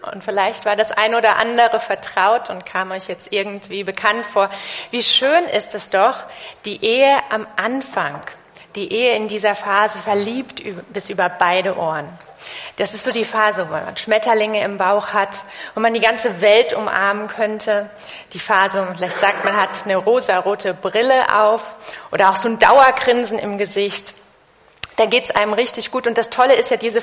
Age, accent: 30-49, German